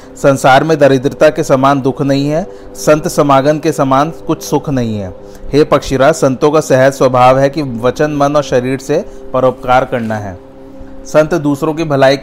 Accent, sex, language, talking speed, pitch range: native, male, Hindi, 175 wpm, 125-150 Hz